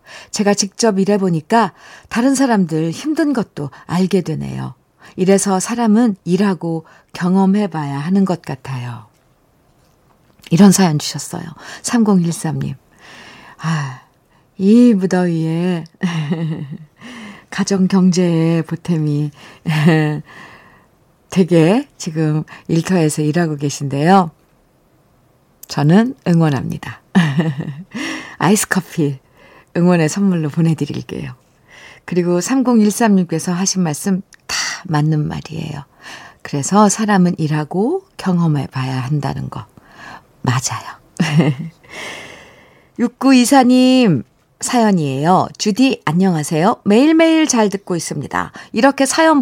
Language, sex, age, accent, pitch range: Korean, female, 50-69, native, 155-210 Hz